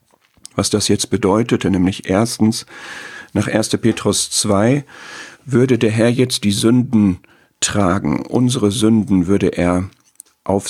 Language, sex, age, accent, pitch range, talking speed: German, male, 50-69, German, 95-115 Hz, 125 wpm